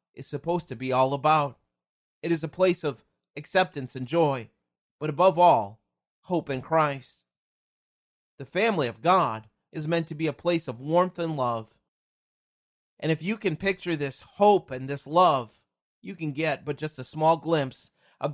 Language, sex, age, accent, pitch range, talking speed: English, male, 30-49, American, 125-160 Hz, 175 wpm